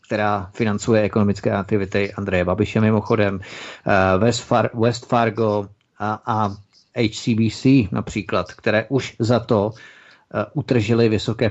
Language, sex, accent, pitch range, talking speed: Czech, male, native, 105-120 Hz, 100 wpm